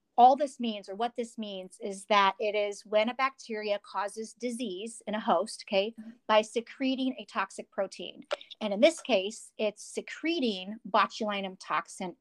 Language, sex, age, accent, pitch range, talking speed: English, female, 40-59, American, 195-240 Hz, 160 wpm